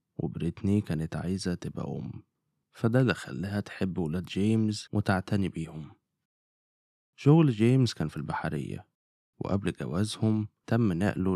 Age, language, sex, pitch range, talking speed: 20-39, Arabic, male, 85-110 Hz, 115 wpm